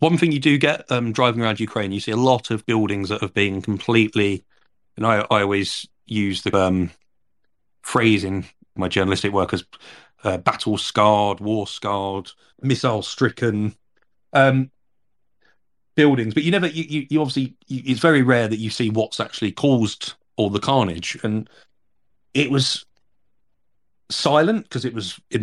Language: English